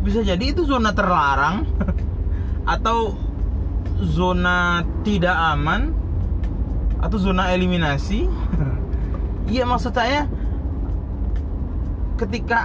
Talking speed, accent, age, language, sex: 75 wpm, native, 20-39, Indonesian, male